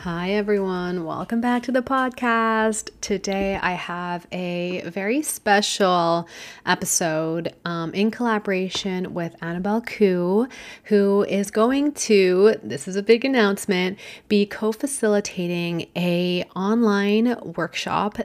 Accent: American